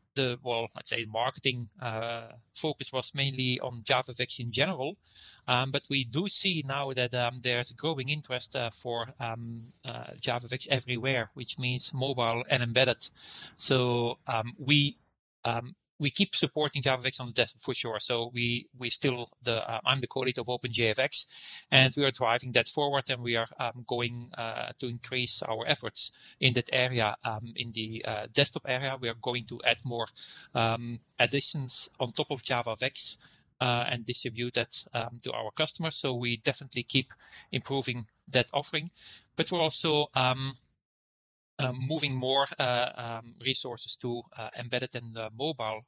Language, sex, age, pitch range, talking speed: English, male, 30-49, 120-140 Hz, 170 wpm